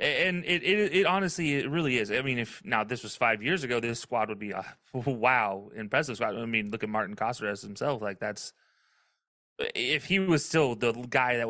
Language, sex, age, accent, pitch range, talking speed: English, male, 30-49, American, 110-140 Hz, 225 wpm